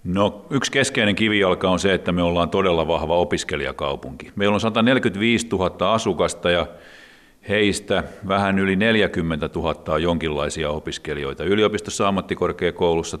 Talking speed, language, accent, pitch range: 125 wpm, Finnish, native, 85-105 Hz